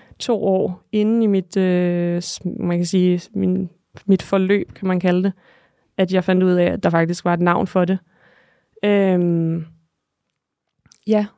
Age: 20-39